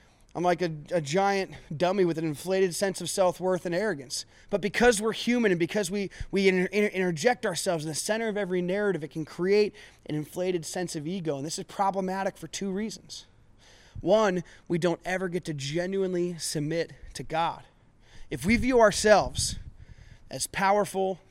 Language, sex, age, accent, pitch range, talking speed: English, male, 20-39, American, 145-190 Hz, 170 wpm